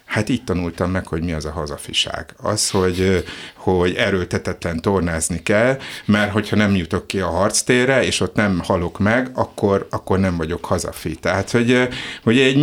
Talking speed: 170 wpm